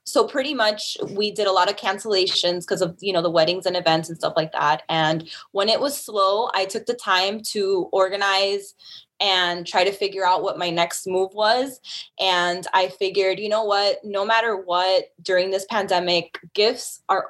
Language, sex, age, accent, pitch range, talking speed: English, female, 10-29, American, 180-215 Hz, 195 wpm